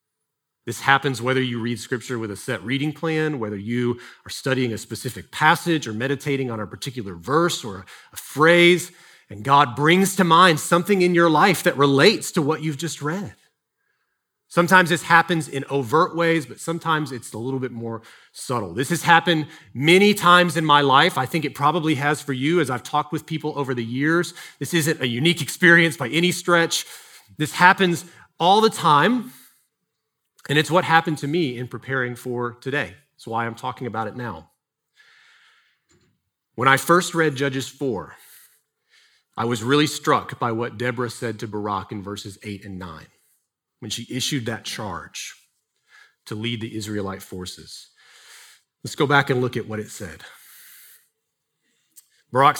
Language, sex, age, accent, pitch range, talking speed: English, male, 30-49, American, 120-165 Hz, 170 wpm